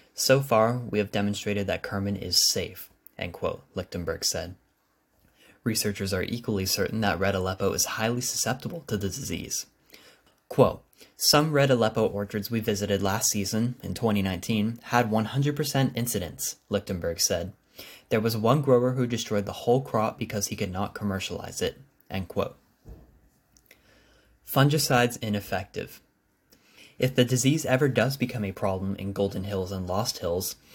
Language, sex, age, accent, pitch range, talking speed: English, male, 10-29, American, 95-120 Hz, 145 wpm